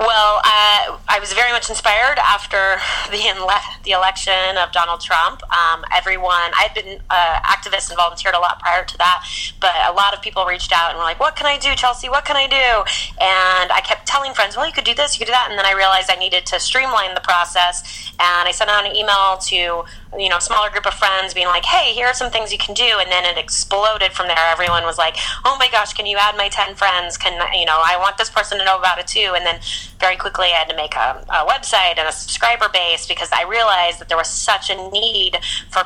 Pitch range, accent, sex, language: 175-210 Hz, American, female, English